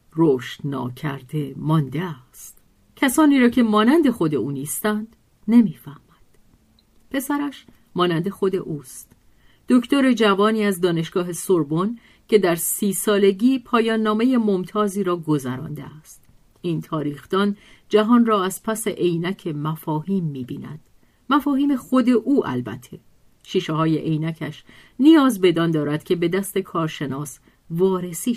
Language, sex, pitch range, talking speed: Persian, female, 150-220 Hz, 120 wpm